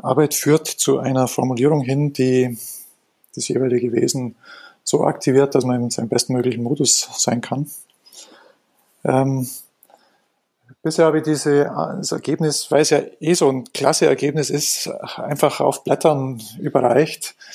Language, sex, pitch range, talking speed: German, male, 130-150 Hz, 135 wpm